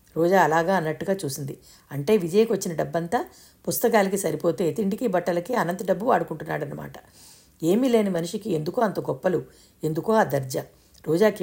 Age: 60-79